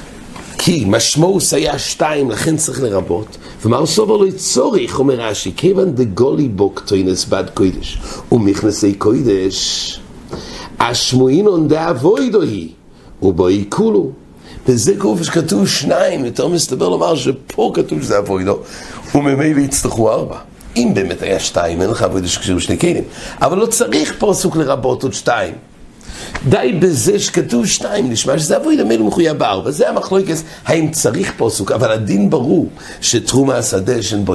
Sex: male